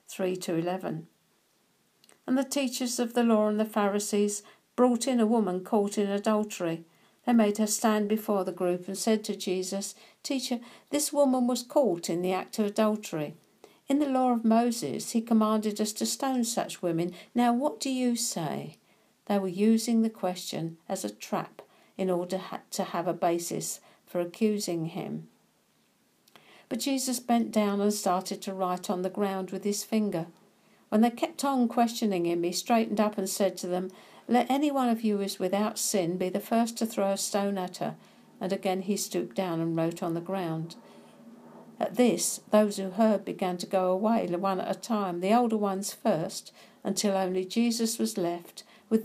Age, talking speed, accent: 60-79, 185 wpm, British